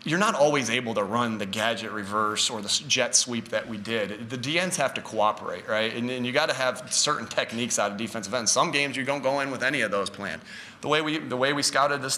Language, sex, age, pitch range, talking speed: English, male, 30-49, 115-135 Hz, 260 wpm